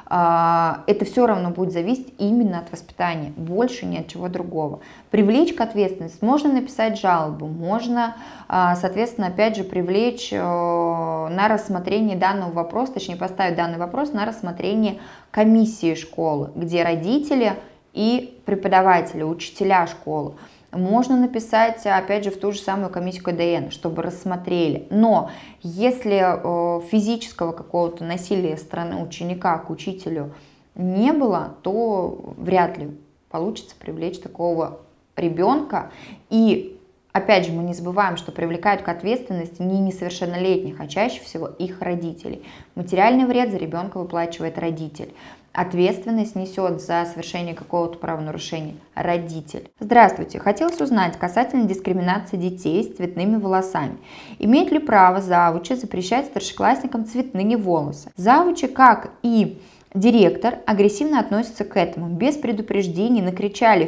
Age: 20-39